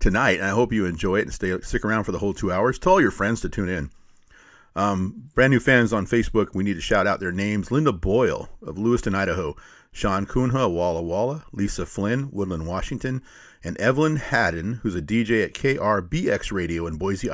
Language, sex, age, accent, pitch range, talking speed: English, male, 40-59, American, 95-120 Hz, 210 wpm